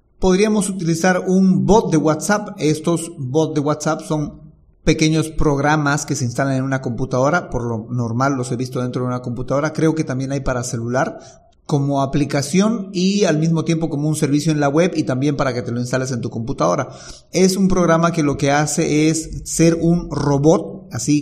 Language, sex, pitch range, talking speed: Spanish, male, 130-160 Hz, 195 wpm